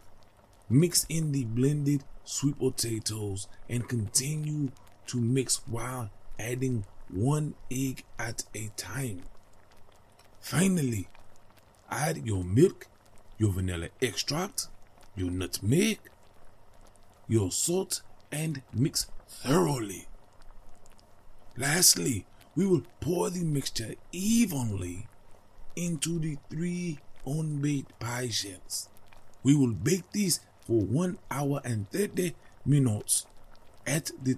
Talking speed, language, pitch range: 100 wpm, English, 105-150 Hz